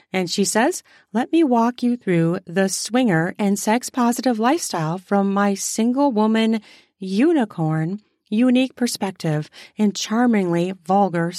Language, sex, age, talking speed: English, female, 40-59, 115 wpm